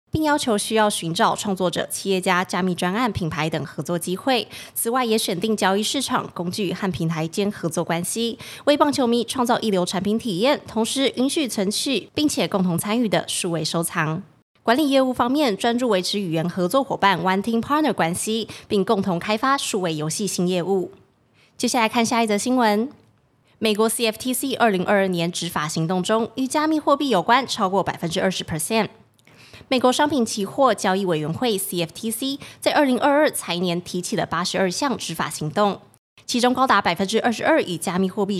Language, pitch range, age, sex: Chinese, 180-235 Hz, 20-39, female